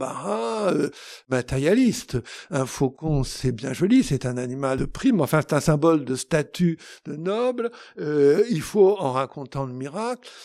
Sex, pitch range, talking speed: male, 140-195 Hz, 150 wpm